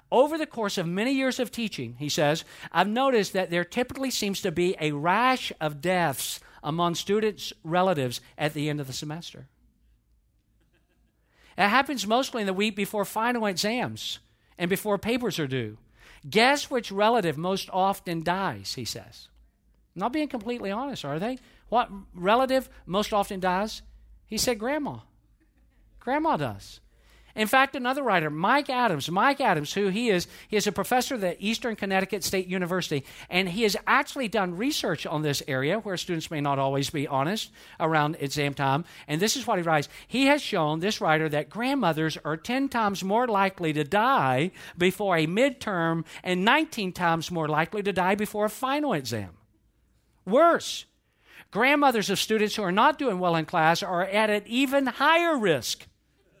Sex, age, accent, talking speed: male, 50-69, American, 170 wpm